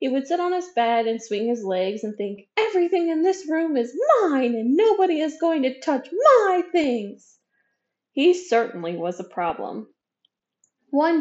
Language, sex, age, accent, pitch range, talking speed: English, female, 10-29, American, 210-285 Hz, 170 wpm